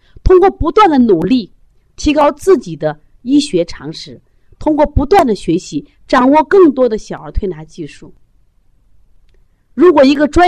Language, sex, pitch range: Chinese, female, 150-250 Hz